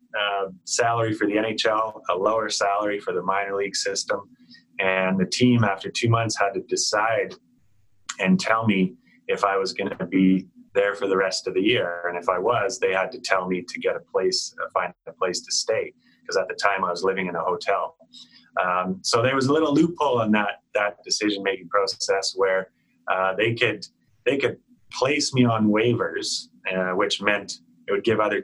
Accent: American